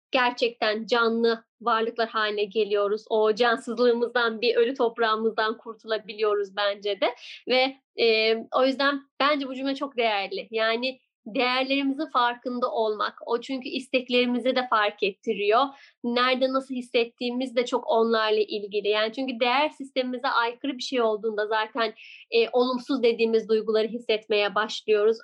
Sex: female